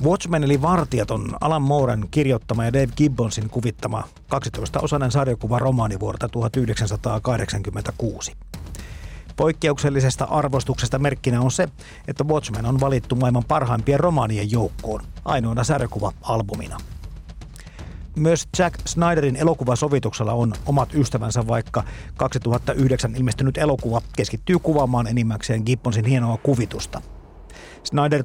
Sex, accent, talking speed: male, native, 100 wpm